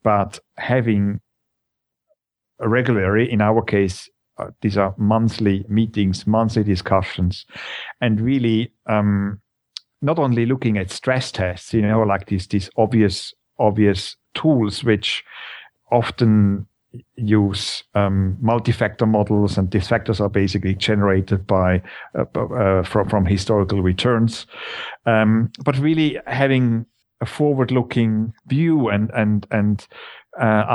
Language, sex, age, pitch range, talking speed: English, male, 50-69, 100-125 Hz, 120 wpm